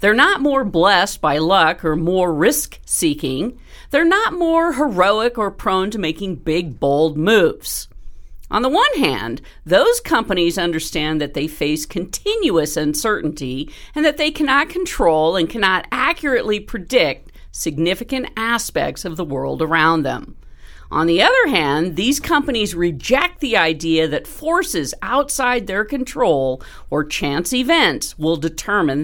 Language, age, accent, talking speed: English, 50-69, American, 140 wpm